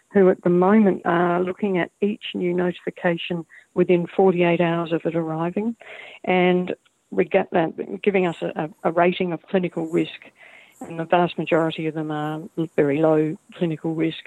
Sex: female